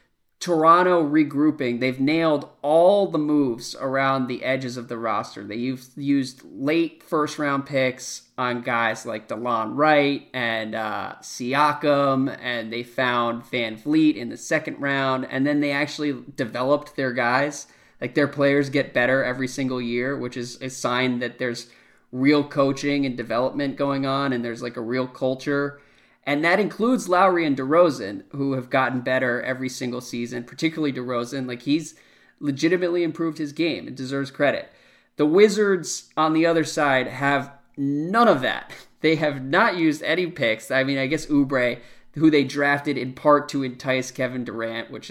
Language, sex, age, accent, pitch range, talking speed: English, male, 20-39, American, 125-150 Hz, 165 wpm